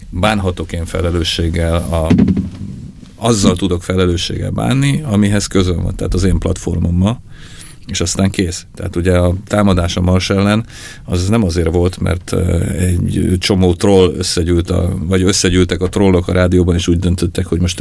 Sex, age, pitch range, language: male, 40-59, 90-100 Hz, Hungarian